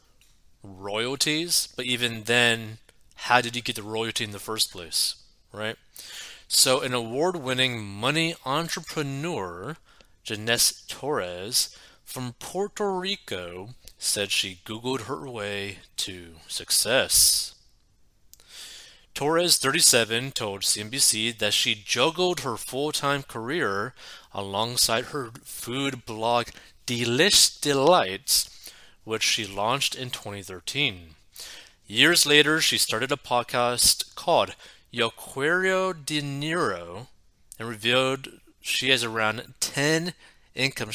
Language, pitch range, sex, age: English, 110-140 Hz, male, 30-49